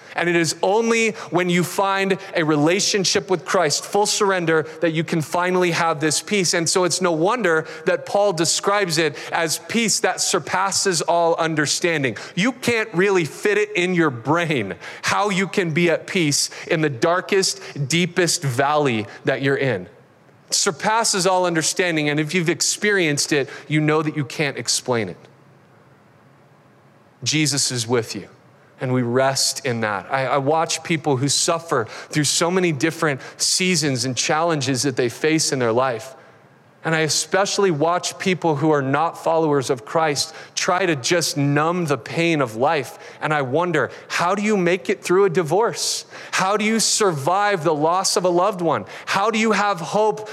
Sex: male